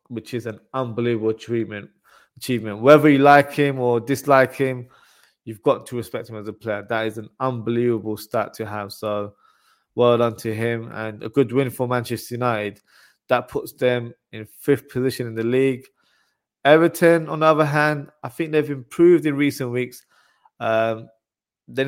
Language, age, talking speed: English, 20-39, 170 wpm